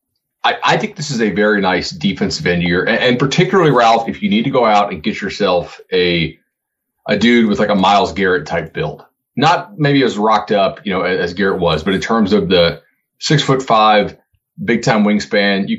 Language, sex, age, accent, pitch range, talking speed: English, male, 30-49, American, 90-115 Hz, 210 wpm